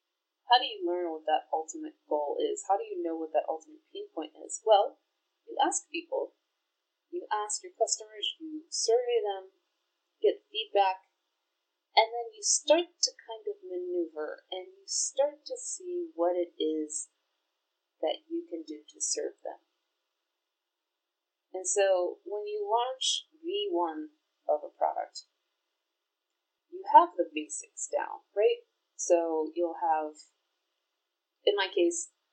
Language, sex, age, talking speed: English, female, 30-49, 140 wpm